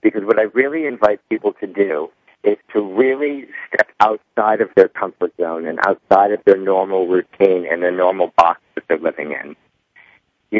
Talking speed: 180 wpm